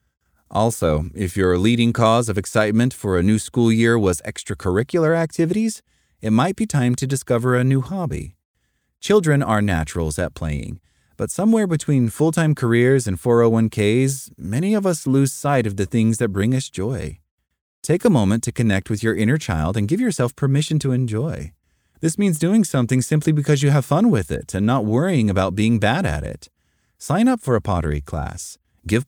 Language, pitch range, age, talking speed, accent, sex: English, 95-145 Hz, 30-49, 185 wpm, American, male